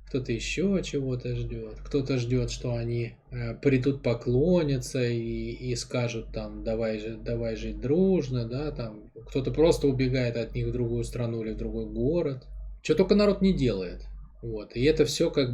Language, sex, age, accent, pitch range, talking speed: Russian, male, 20-39, native, 110-140 Hz, 160 wpm